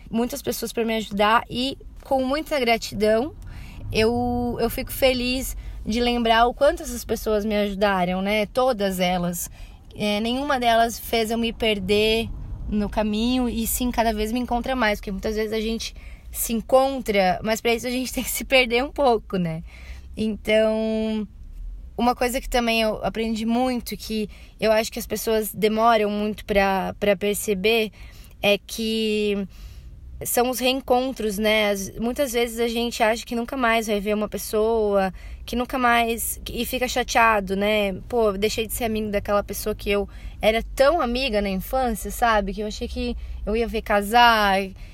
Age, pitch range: 20-39, 210-240 Hz